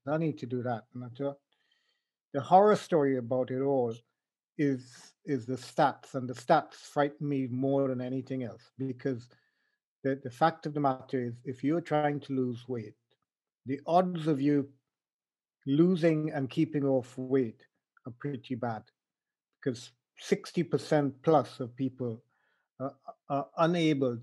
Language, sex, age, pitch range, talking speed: English, male, 50-69, 125-145 Hz, 145 wpm